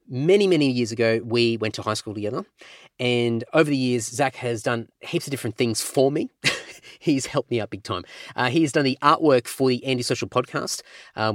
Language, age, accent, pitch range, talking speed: English, 30-49, Australian, 110-140 Hz, 215 wpm